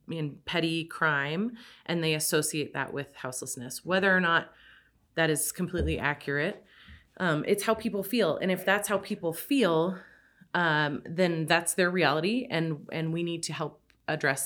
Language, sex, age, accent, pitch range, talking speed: English, female, 30-49, American, 145-180 Hz, 160 wpm